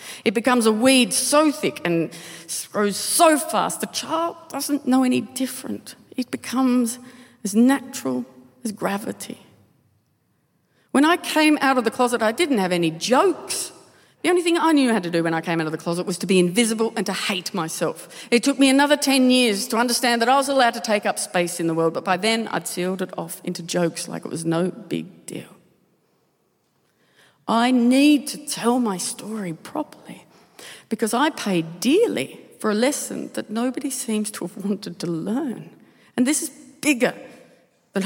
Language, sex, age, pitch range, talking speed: English, female, 40-59, 195-265 Hz, 190 wpm